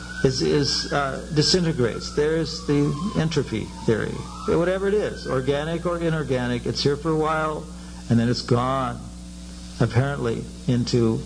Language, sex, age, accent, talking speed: English, male, 60-79, American, 135 wpm